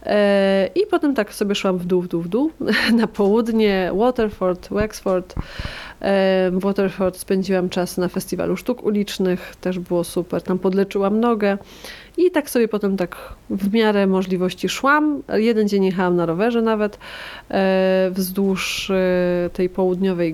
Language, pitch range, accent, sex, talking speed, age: Polish, 185-215 Hz, native, female, 140 wpm, 30-49